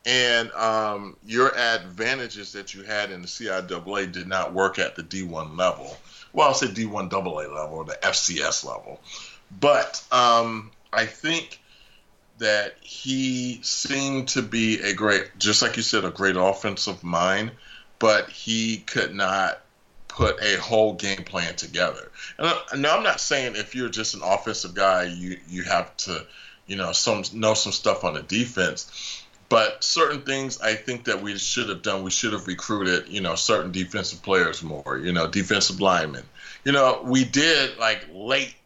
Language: English